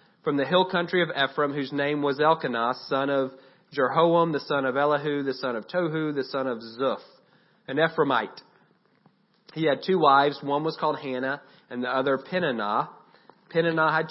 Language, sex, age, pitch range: English, male, 30-49, 130-150 Hz